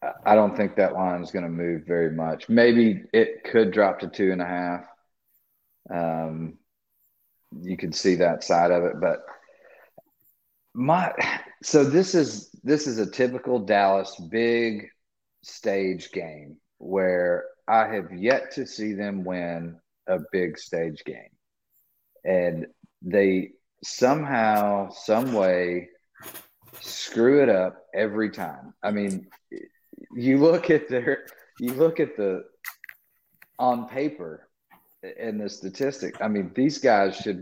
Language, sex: English, male